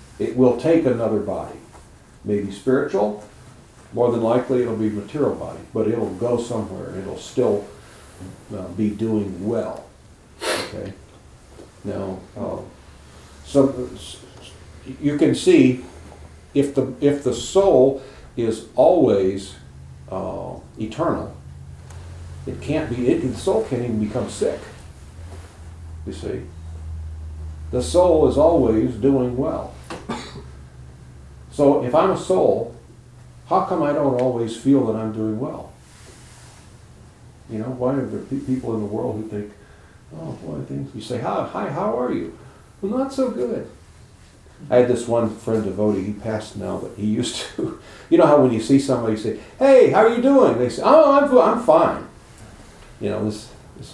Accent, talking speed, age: American, 150 wpm, 60-79